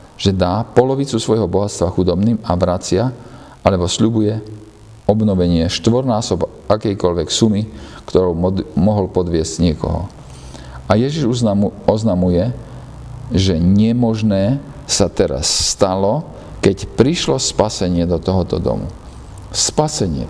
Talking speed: 105 wpm